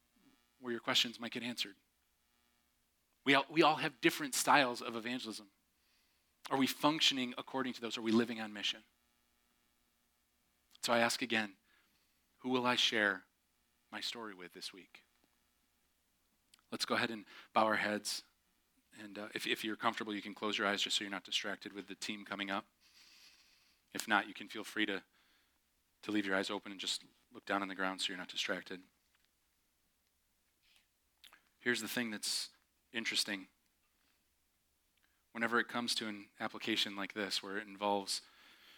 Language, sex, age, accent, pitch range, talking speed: English, male, 30-49, American, 70-110 Hz, 165 wpm